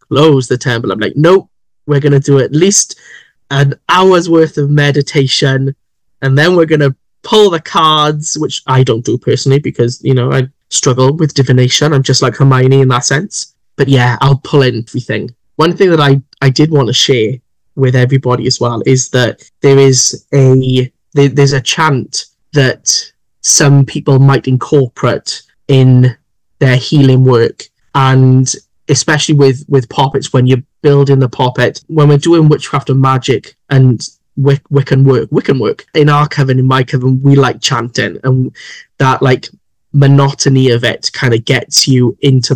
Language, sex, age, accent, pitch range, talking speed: English, male, 10-29, British, 130-145 Hz, 175 wpm